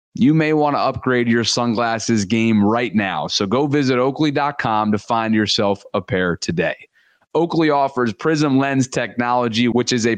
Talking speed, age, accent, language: 165 wpm, 30-49, American, English